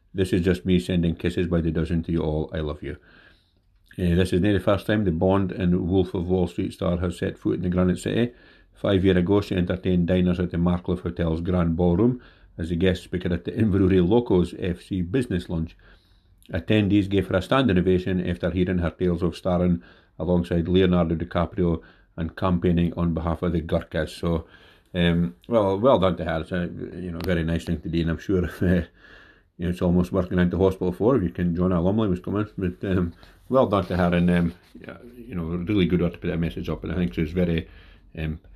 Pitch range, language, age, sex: 85-95 Hz, English, 50-69, male